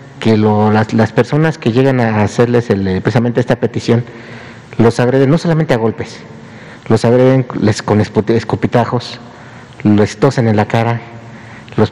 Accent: Mexican